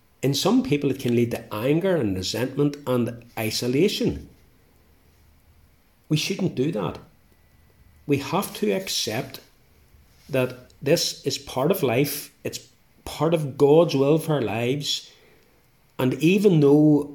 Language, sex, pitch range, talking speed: English, male, 110-145 Hz, 130 wpm